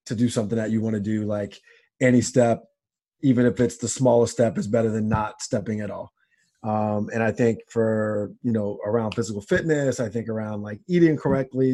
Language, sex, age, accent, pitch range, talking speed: English, male, 30-49, American, 115-135 Hz, 205 wpm